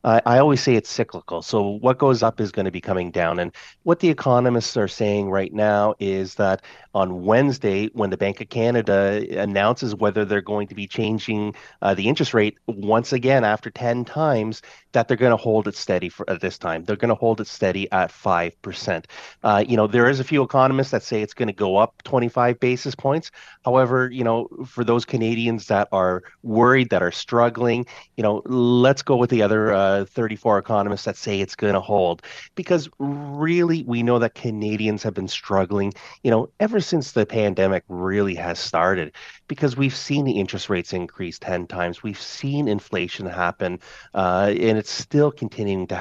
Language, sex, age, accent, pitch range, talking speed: English, male, 30-49, American, 100-130 Hz, 195 wpm